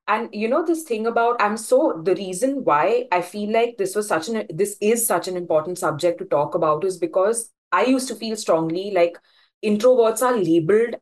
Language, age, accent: English, 20-39, Indian